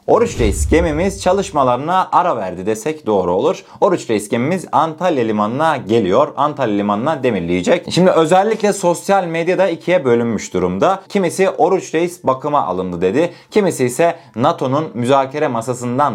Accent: native